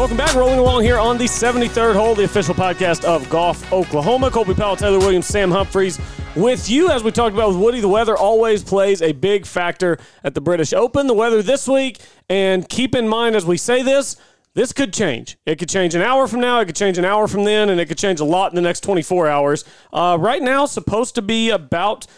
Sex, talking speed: male, 235 wpm